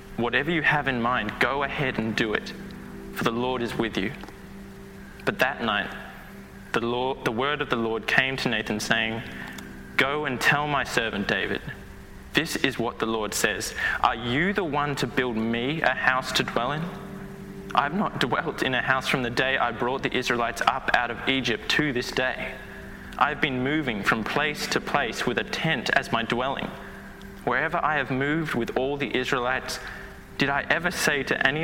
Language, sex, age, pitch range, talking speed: English, male, 20-39, 115-135 Hz, 195 wpm